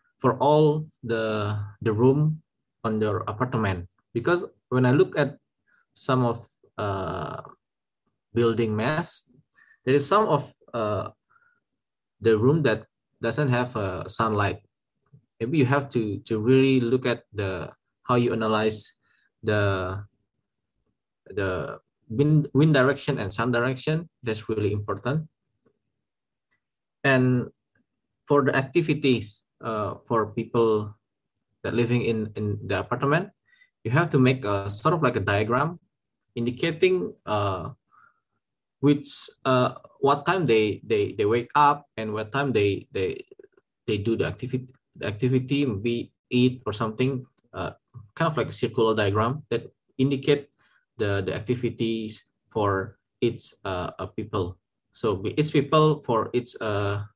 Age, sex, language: 20-39, male, Indonesian